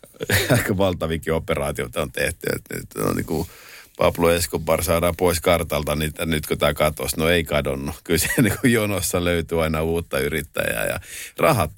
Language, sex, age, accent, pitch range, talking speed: Finnish, male, 50-69, native, 80-95 Hz, 165 wpm